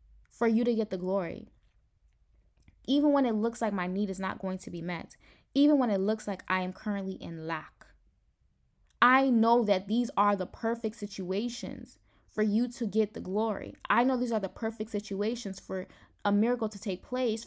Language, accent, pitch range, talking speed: English, American, 170-230 Hz, 190 wpm